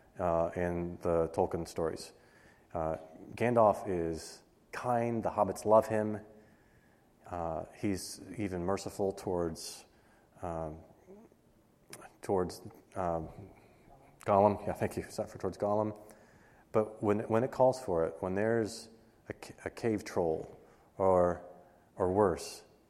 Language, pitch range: English, 90-105 Hz